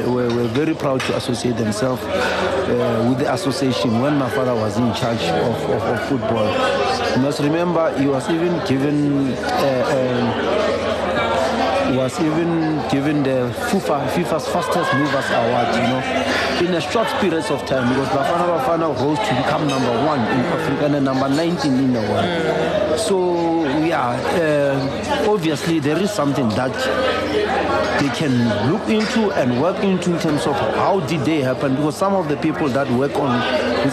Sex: male